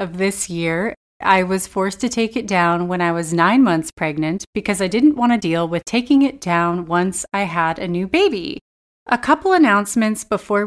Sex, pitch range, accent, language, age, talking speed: female, 175-245 Hz, American, English, 30-49, 200 wpm